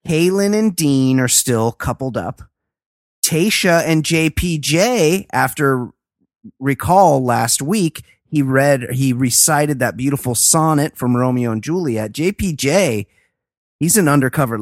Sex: male